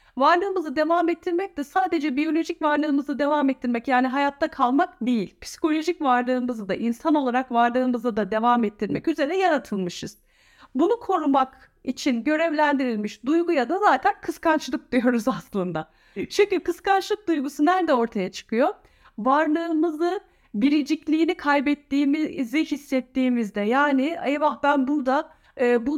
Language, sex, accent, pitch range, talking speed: Turkish, female, native, 240-315 Hz, 115 wpm